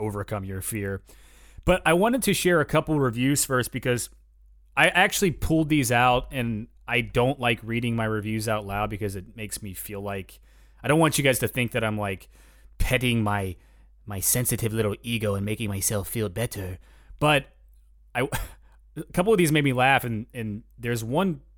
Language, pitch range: English, 100-130 Hz